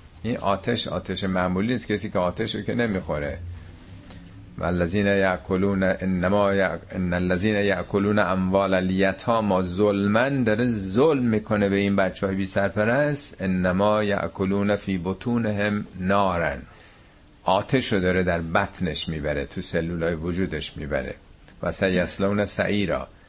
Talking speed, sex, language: 130 wpm, male, Persian